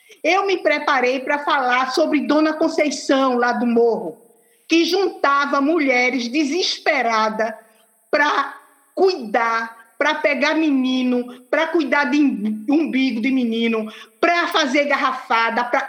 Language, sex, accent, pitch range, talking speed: Portuguese, female, Brazilian, 255-325 Hz, 110 wpm